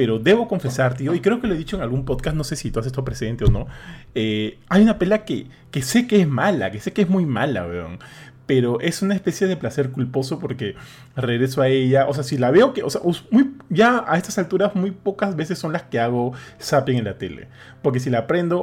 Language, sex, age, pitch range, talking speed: Spanish, male, 30-49, 120-155 Hz, 250 wpm